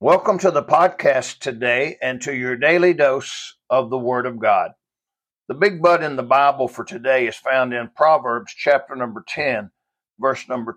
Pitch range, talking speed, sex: 130-175 Hz, 180 wpm, male